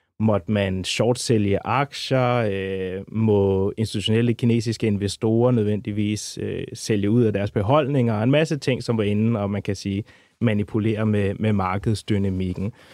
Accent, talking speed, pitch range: native, 145 wpm, 100-115 Hz